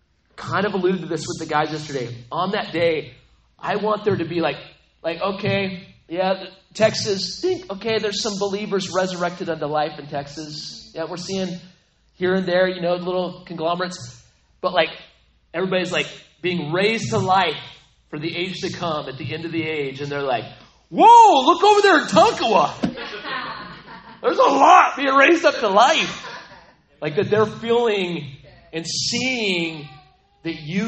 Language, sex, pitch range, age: English, male, 145-190 Hz, 30-49